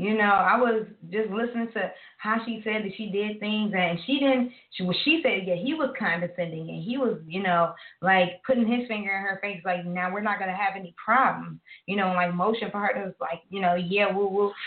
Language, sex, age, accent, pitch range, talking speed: English, female, 20-39, American, 180-225 Hz, 235 wpm